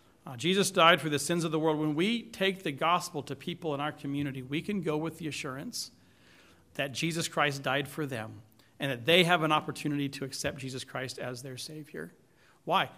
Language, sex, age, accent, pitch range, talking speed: English, male, 40-59, American, 140-180 Hz, 205 wpm